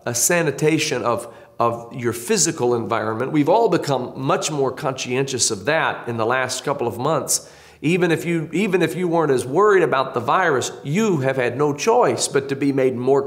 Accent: American